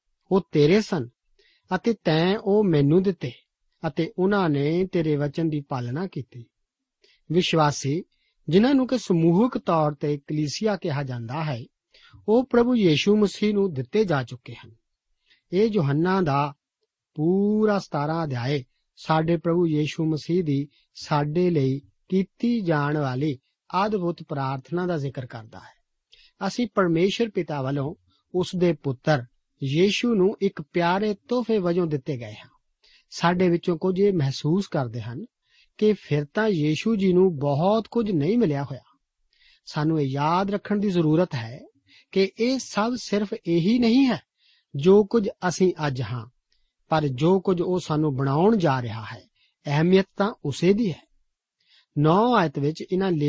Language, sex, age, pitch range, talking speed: Punjabi, male, 50-69, 145-195 Hz, 100 wpm